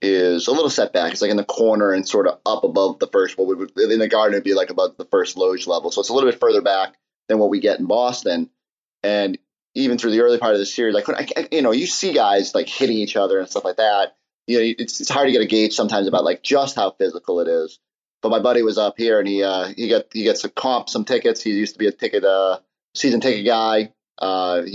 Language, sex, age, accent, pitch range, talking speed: English, male, 30-49, American, 100-135 Hz, 270 wpm